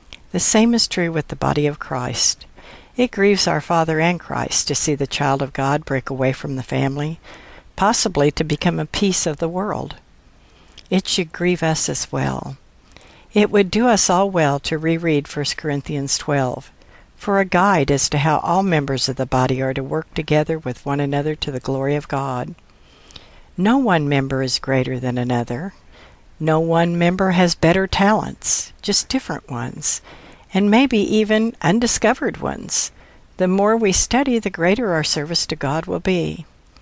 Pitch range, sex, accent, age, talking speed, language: 140-185 Hz, female, American, 60-79, 175 wpm, English